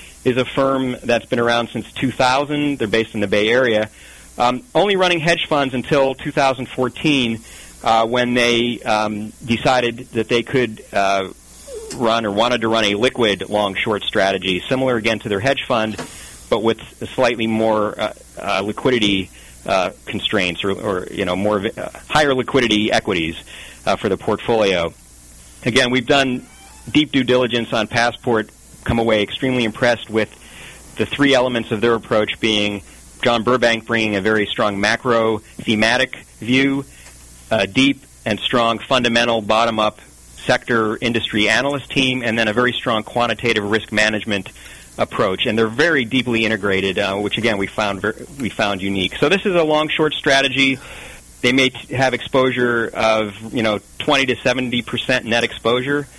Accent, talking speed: American, 160 wpm